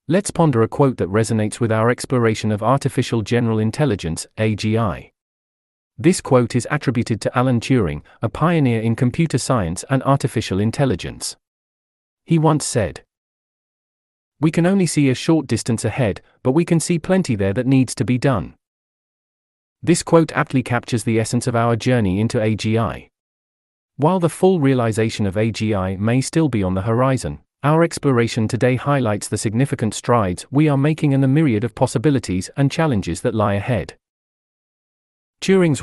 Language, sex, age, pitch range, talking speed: English, male, 40-59, 105-135 Hz, 160 wpm